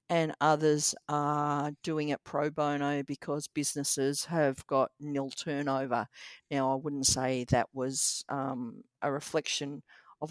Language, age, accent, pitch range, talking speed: English, 50-69, Australian, 140-155 Hz, 135 wpm